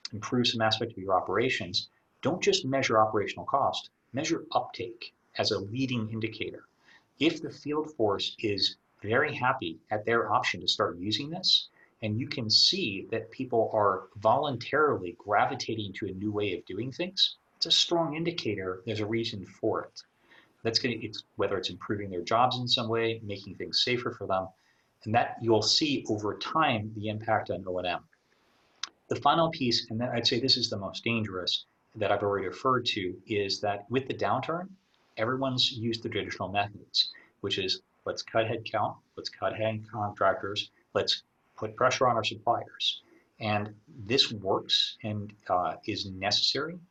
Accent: American